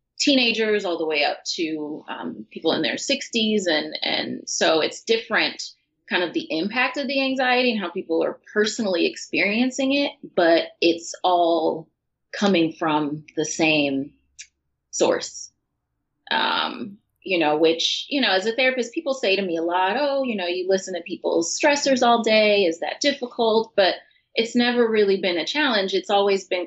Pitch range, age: 155-235 Hz, 30-49